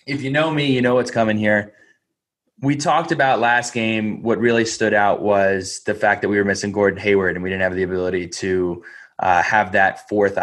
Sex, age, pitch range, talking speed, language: male, 20-39, 100-125 Hz, 220 wpm, English